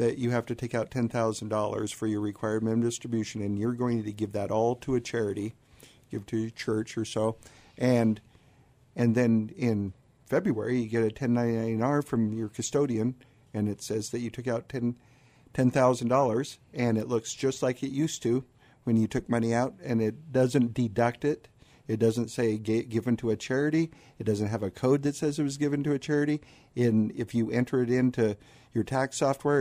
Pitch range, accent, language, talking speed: 110-130 Hz, American, English, 195 wpm